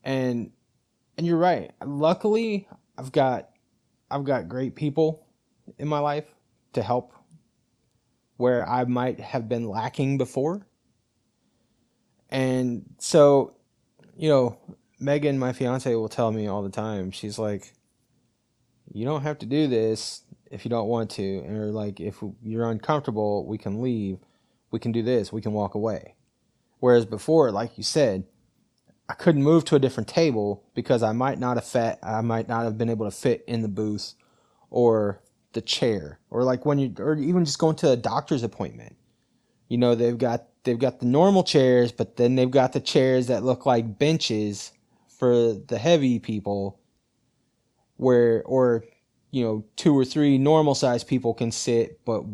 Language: English